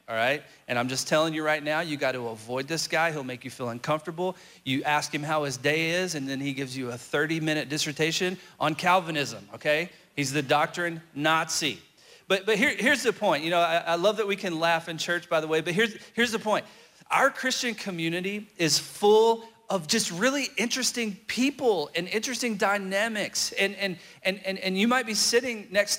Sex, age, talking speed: male, 40-59, 205 wpm